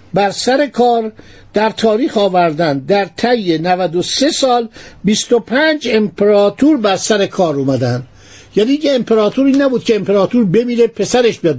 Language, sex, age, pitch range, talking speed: Persian, male, 50-69, 180-235 Hz, 135 wpm